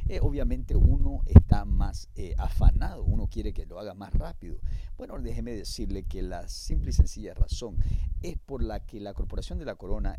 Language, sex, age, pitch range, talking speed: English, male, 50-69, 85-110 Hz, 190 wpm